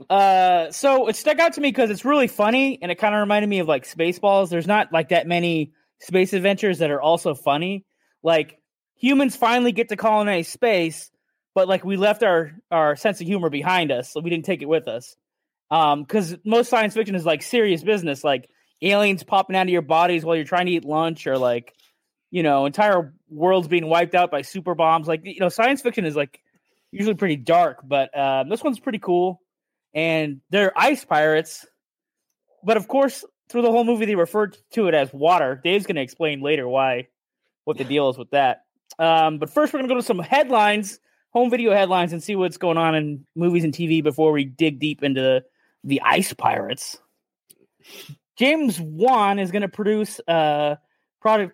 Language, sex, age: English, male, 20-39